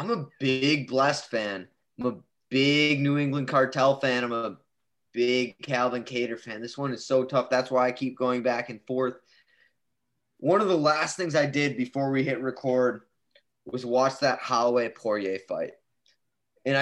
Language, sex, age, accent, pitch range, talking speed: English, male, 20-39, American, 120-145 Hz, 175 wpm